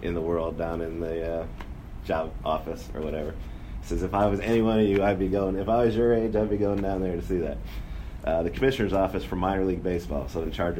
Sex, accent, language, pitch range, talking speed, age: male, American, English, 80-90 Hz, 260 wpm, 30-49